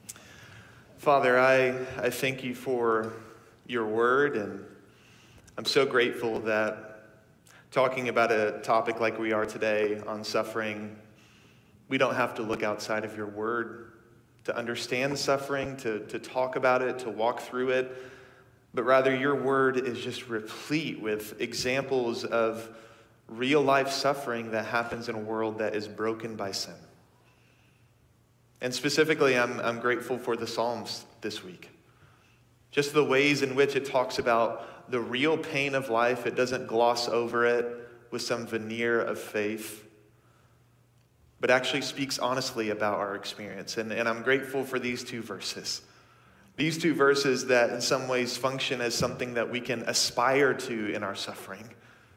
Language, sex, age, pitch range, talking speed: English, male, 30-49, 110-130 Hz, 155 wpm